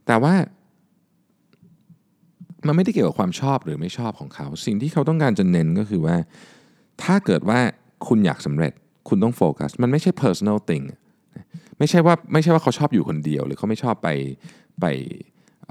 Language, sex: Thai, male